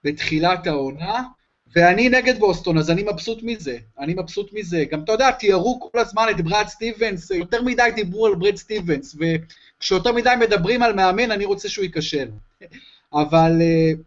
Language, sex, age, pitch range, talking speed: Hebrew, male, 30-49, 170-240 Hz, 160 wpm